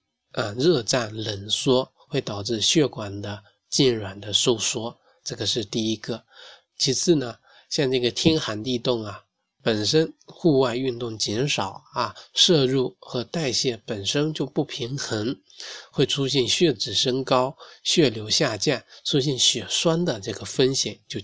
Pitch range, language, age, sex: 110-135 Hz, Chinese, 20-39, male